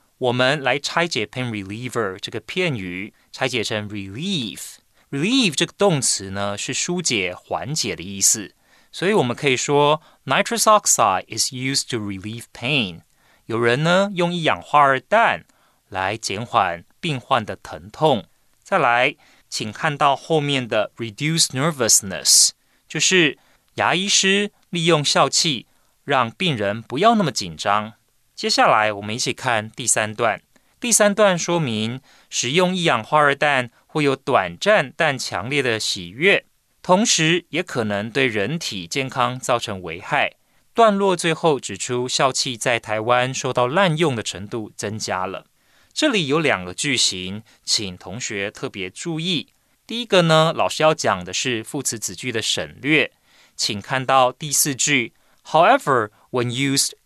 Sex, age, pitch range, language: male, 30-49, 110-165 Hz, Chinese